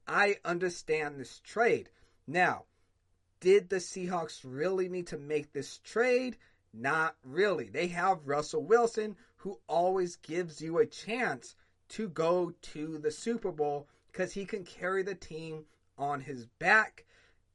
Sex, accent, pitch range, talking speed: male, American, 140-195 Hz, 140 wpm